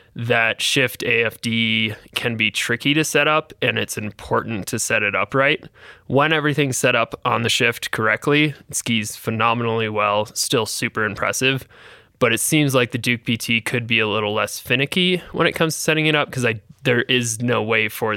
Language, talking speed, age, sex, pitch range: English, 195 wpm, 20-39, male, 110-135 Hz